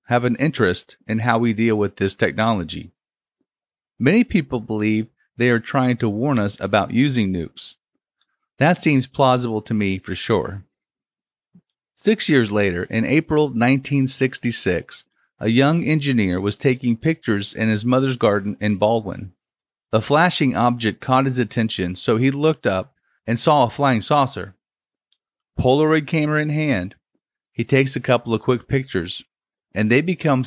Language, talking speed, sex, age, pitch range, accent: English, 150 wpm, male, 40-59, 105-140 Hz, American